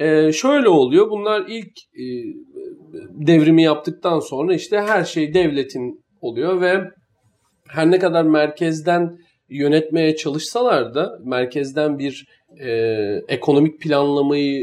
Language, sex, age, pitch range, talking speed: Turkish, male, 40-59, 135-210 Hz, 110 wpm